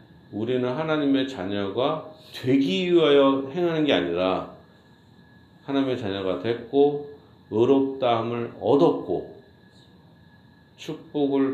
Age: 40-59